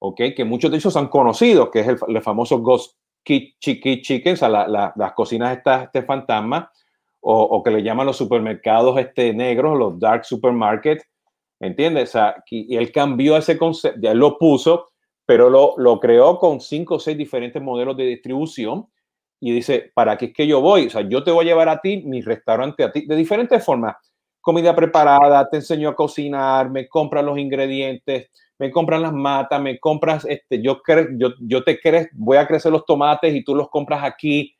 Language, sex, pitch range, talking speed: Spanish, male, 125-155 Hz, 200 wpm